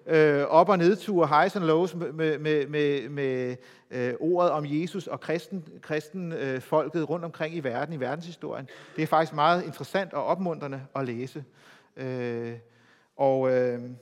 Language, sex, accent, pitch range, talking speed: Danish, male, native, 130-175 Hz, 135 wpm